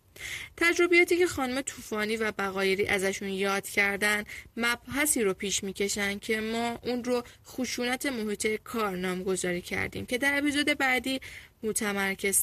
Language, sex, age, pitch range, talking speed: Persian, female, 10-29, 195-245 Hz, 130 wpm